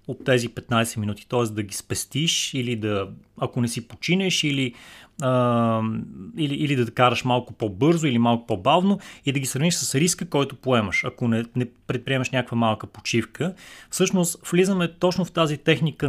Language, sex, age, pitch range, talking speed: Bulgarian, male, 30-49, 120-155 Hz, 175 wpm